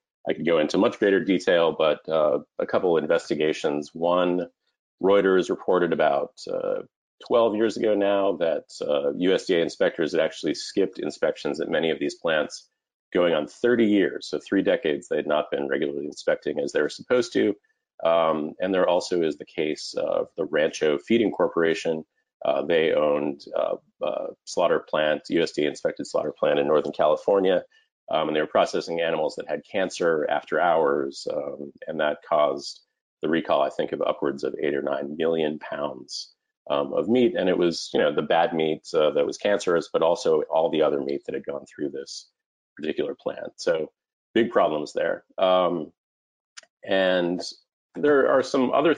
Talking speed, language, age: 175 wpm, English, 40-59